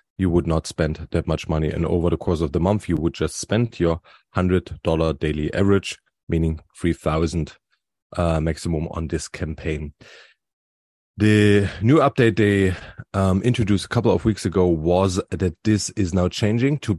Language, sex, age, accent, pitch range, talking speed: English, male, 30-49, German, 90-110 Hz, 165 wpm